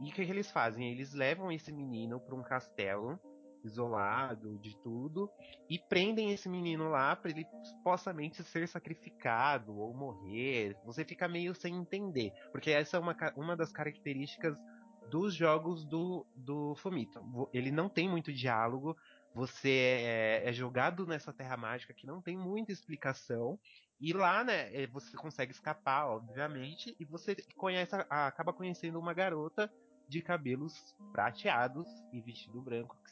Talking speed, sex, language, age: 150 wpm, male, Portuguese, 20-39